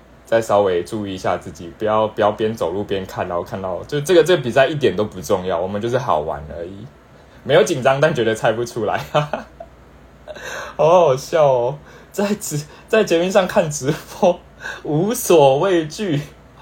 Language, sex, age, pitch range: Chinese, male, 20-39, 95-150 Hz